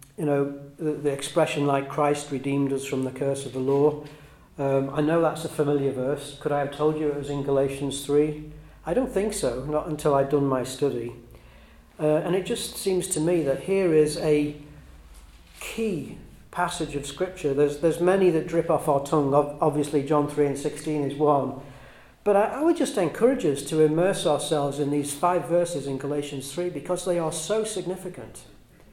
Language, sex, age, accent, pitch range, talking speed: English, male, 40-59, British, 135-160 Hz, 195 wpm